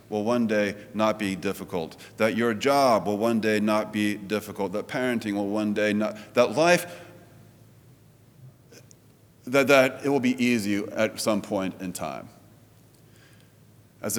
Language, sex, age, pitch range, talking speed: English, male, 40-59, 100-125 Hz, 150 wpm